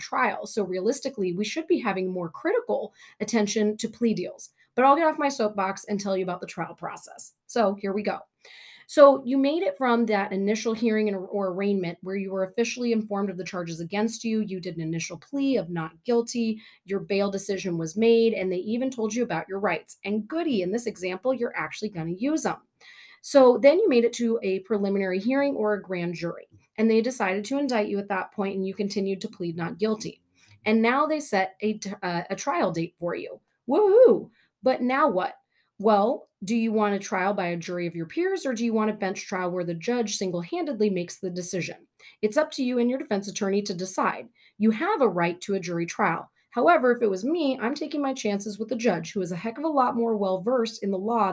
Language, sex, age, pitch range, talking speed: English, female, 30-49, 190-240 Hz, 230 wpm